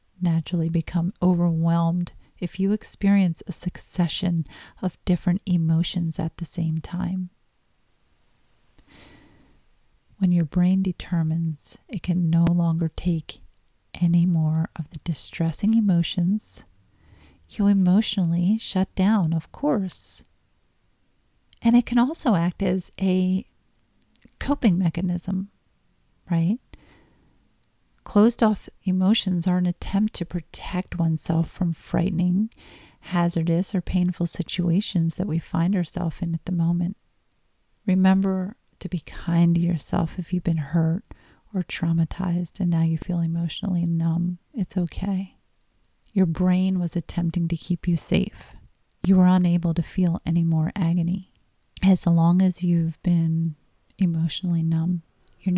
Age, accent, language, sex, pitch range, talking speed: 40-59, American, English, female, 165-185 Hz, 120 wpm